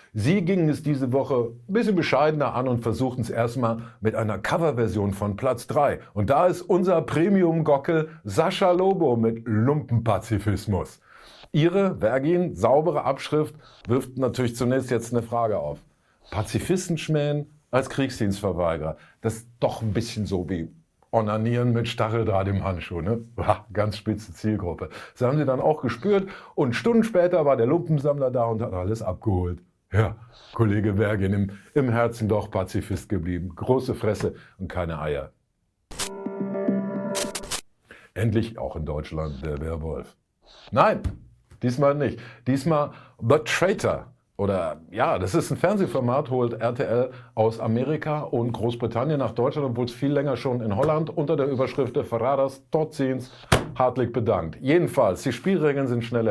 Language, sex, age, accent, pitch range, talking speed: German, male, 50-69, German, 105-145 Hz, 145 wpm